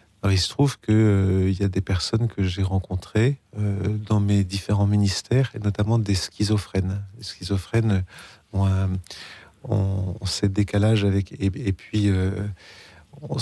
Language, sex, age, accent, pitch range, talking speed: French, male, 40-59, French, 100-115 Hz, 140 wpm